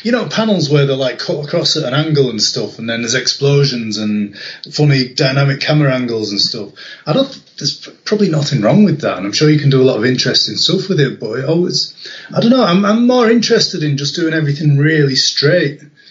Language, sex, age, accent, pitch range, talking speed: English, male, 30-49, British, 125-155 Hz, 230 wpm